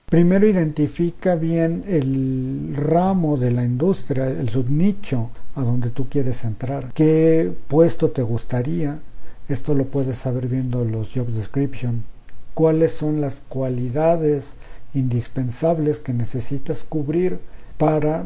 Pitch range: 120-155 Hz